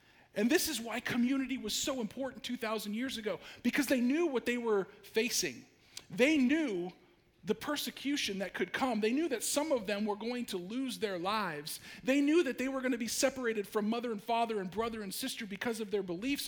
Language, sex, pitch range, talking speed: English, male, 180-235 Hz, 210 wpm